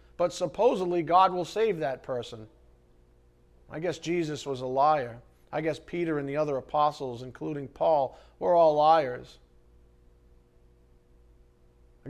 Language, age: English, 40-59